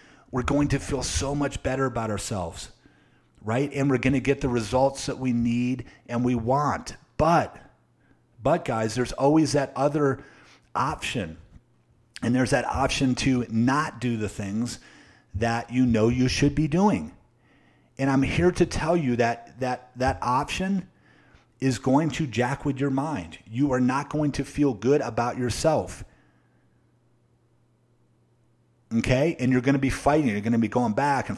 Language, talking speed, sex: English, 165 wpm, male